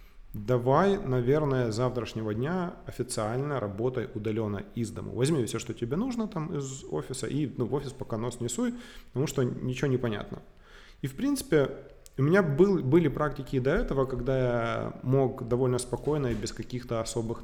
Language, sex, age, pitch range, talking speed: Russian, male, 30-49, 120-140 Hz, 170 wpm